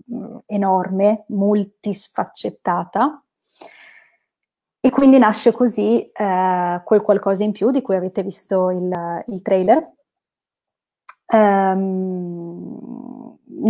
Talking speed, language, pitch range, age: 85 wpm, Italian, 190-220 Hz, 20-39